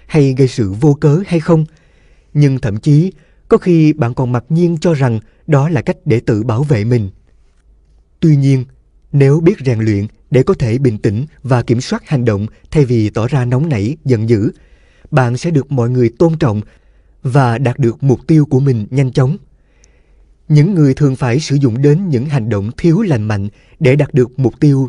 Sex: male